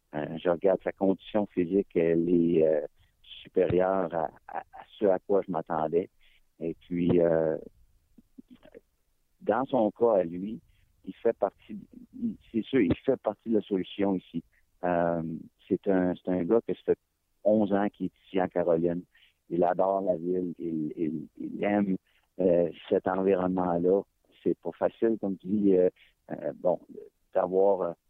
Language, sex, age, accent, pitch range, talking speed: French, male, 50-69, French, 90-100 Hz, 160 wpm